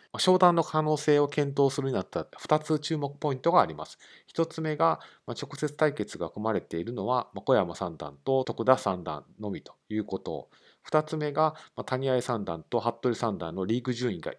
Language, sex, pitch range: Japanese, male, 105-145 Hz